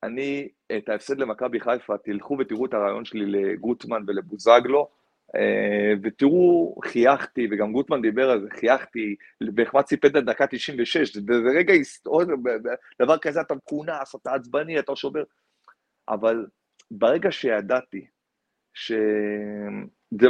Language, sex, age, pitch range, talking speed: Hebrew, male, 30-49, 110-155 Hz, 110 wpm